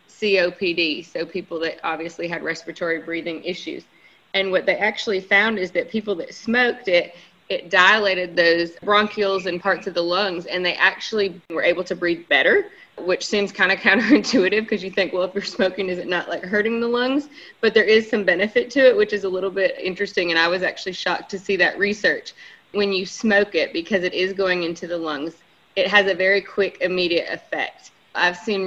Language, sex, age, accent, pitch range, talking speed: English, female, 20-39, American, 170-200 Hz, 205 wpm